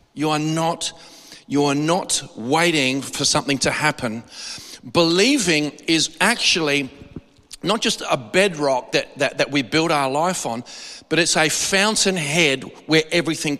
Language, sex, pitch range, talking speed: English, male, 145-185 Hz, 140 wpm